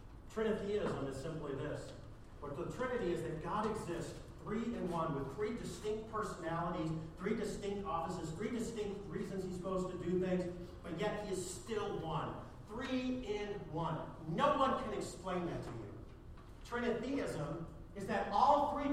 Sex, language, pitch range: male, English, 170-230 Hz